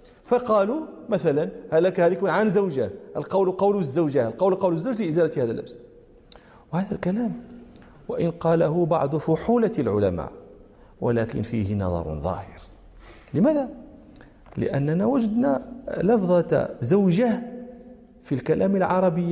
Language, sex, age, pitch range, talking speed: Arabic, male, 40-59, 130-185 Hz, 105 wpm